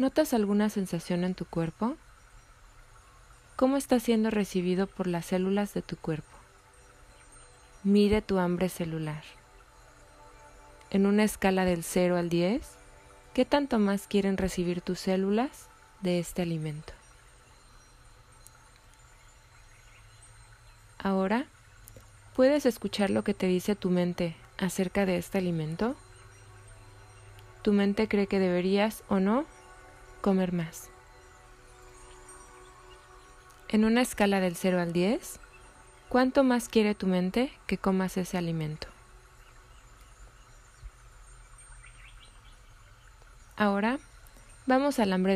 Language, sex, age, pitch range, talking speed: Spanish, female, 20-39, 170-210 Hz, 105 wpm